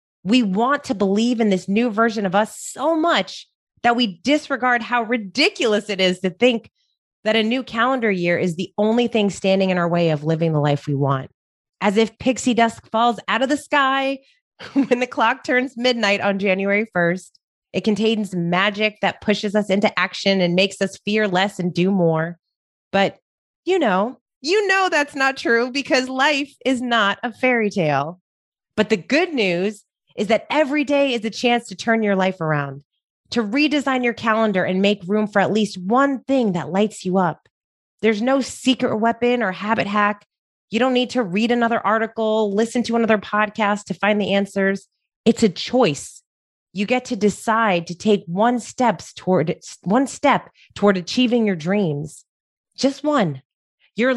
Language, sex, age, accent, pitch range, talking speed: English, female, 30-49, American, 190-245 Hz, 180 wpm